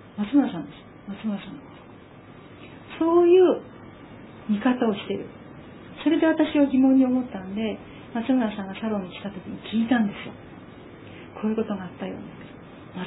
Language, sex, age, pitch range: Japanese, female, 40-59, 205-290 Hz